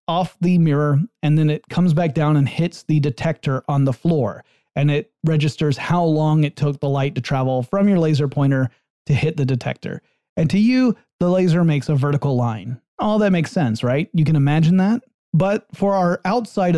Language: English